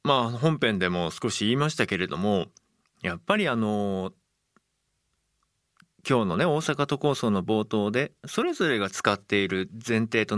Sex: male